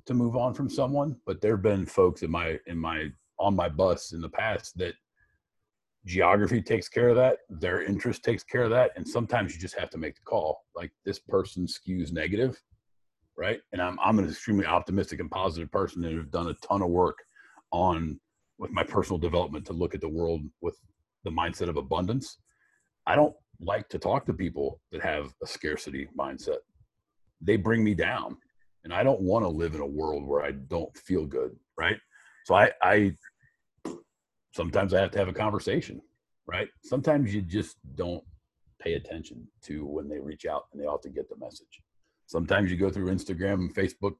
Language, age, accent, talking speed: English, 50-69, American, 195 wpm